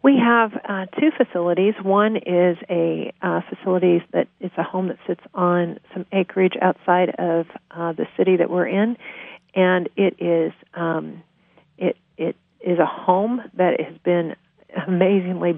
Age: 50-69